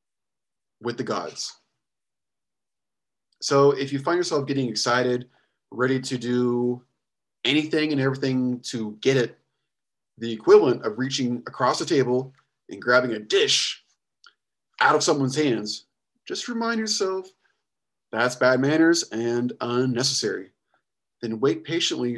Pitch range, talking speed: 115-140 Hz, 120 wpm